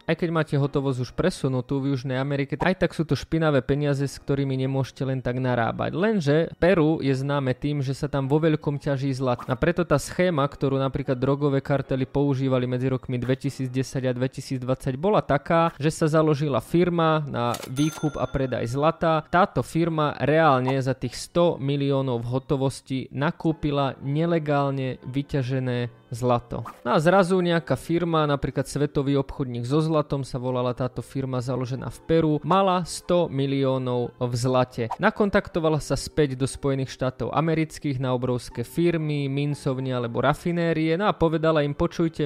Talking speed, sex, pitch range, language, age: 160 wpm, male, 130-155 Hz, Hungarian, 20-39